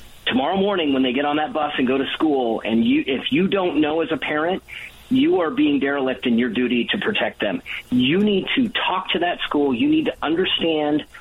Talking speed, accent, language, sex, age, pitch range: 225 wpm, American, English, male, 40-59, 130-185 Hz